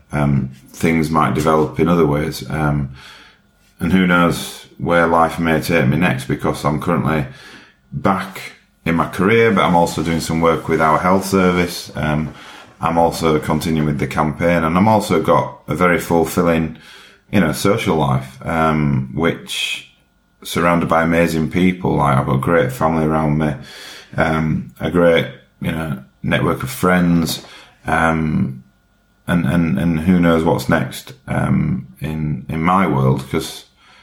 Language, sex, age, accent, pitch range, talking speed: English, male, 30-49, British, 70-85 Hz, 155 wpm